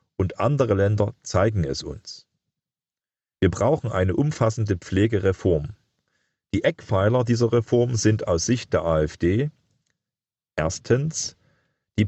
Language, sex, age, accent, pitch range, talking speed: German, male, 40-59, German, 90-115 Hz, 110 wpm